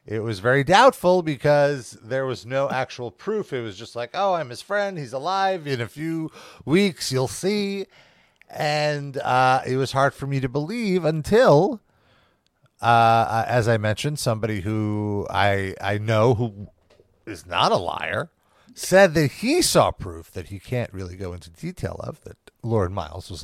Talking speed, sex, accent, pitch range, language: 170 wpm, male, American, 105-150 Hz, English